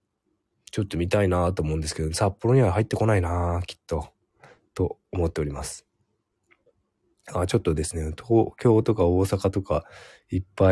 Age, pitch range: 20-39, 85-105 Hz